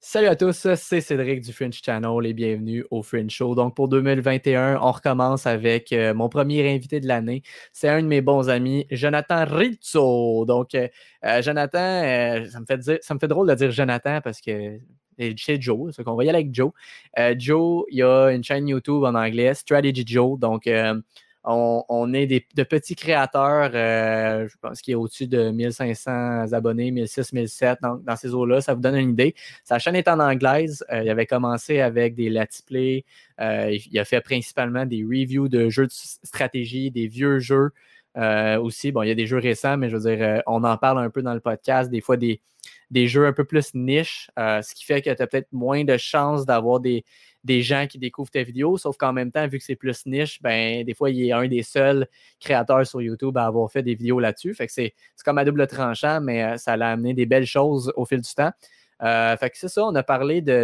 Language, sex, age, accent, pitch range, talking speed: French, male, 20-39, Canadian, 115-140 Hz, 225 wpm